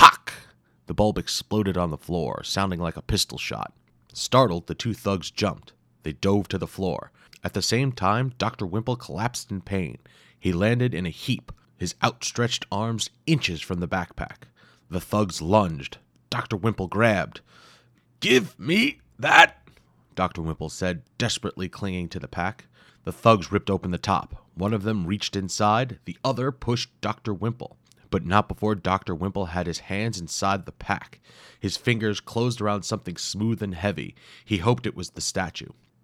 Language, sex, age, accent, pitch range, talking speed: English, male, 30-49, American, 90-110 Hz, 165 wpm